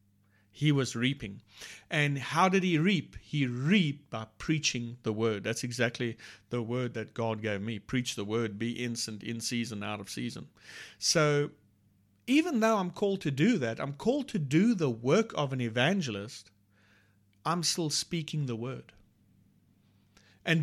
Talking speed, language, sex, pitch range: 160 wpm, English, male, 105-170 Hz